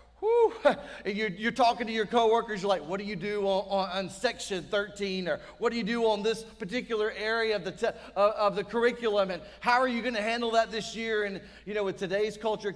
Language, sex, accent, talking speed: English, male, American, 235 wpm